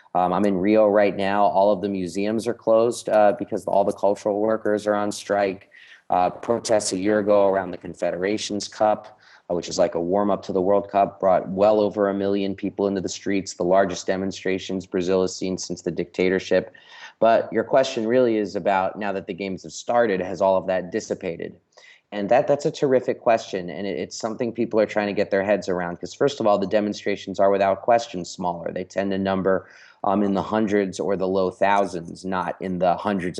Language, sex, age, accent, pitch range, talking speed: English, male, 30-49, American, 95-105 Hz, 215 wpm